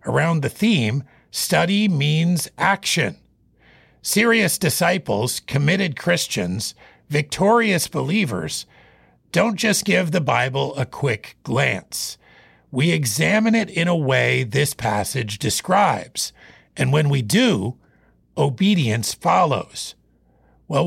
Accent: American